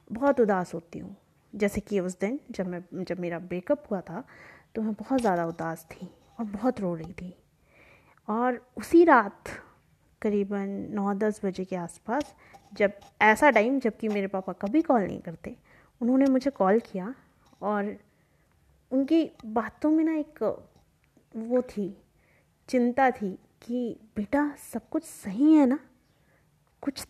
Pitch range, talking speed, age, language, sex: 200-255 Hz, 145 wpm, 20-39, Hindi, female